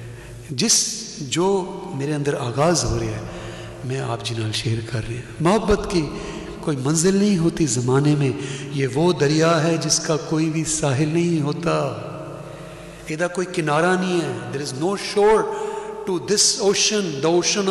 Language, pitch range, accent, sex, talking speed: English, 145-195 Hz, Indian, male, 160 wpm